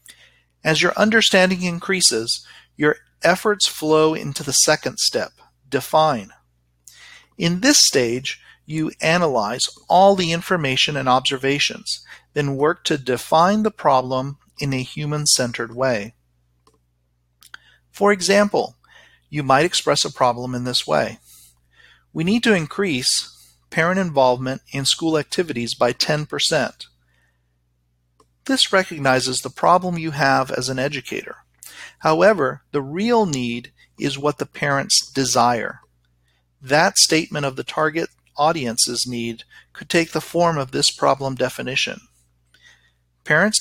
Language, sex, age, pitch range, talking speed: English, male, 40-59, 115-160 Hz, 120 wpm